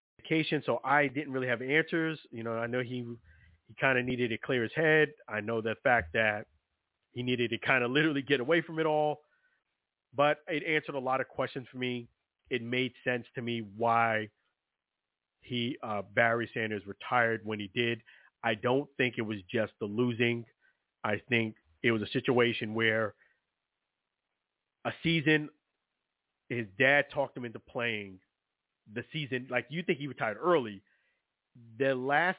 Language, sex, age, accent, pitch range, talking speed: English, male, 30-49, American, 115-145 Hz, 170 wpm